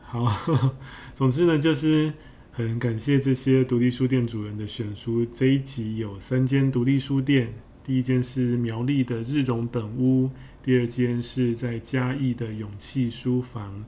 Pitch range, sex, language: 115-130 Hz, male, Chinese